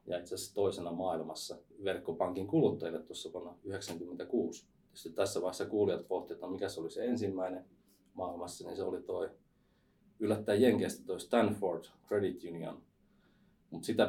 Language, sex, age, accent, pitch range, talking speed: Finnish, male, 30-49, native, 90-105 Hz, 135 wpm